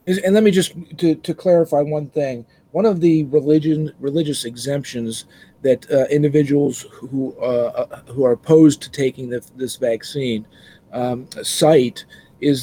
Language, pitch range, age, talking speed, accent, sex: English, 125-150 Hz, 40-59, 145 wpm, American, male